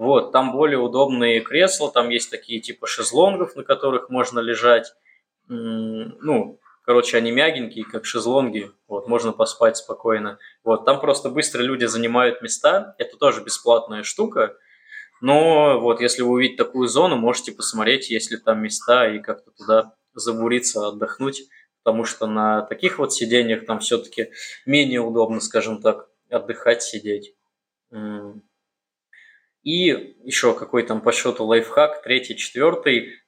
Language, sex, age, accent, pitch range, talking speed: Russian, male, 20-39, native, 110-125 Hz, 135 wpm